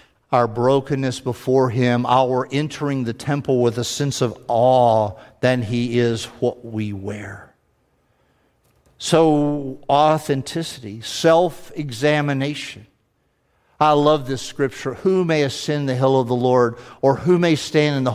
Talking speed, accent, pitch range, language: 130 wpm, American, 125-150 Hz, English